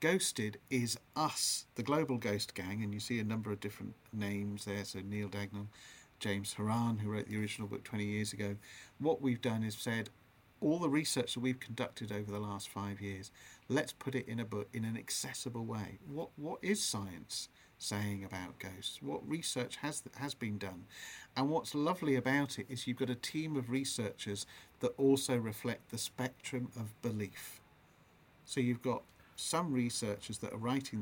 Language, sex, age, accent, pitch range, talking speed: English, male, 50-69, British, 105-130 Hz, 185 wpm